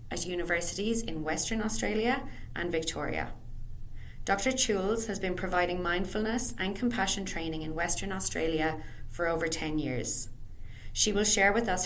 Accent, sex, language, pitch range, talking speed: Irish, female, English, 150-190 Hz, 140 wpm